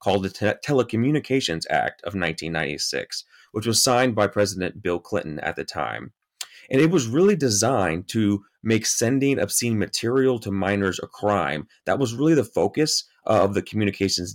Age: 30-49